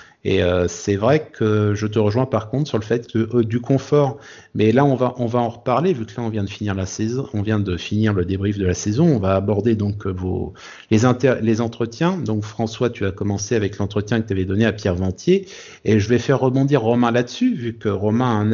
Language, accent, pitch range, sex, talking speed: French, French, 110-145 Hz, male, 255 wpm